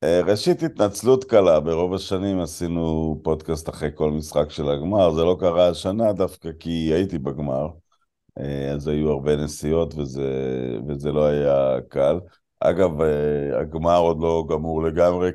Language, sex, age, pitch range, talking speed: Hebrew, male, 50-69, 75-95 Hz, 135 wpm